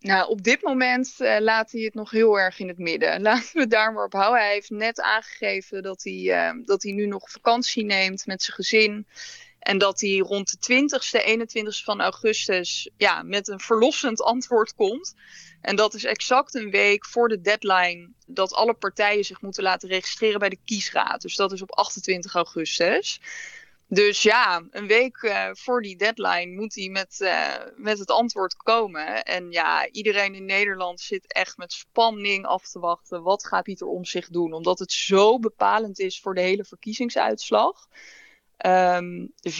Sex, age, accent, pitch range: female, 20-39, Dutch, 190-225 Hz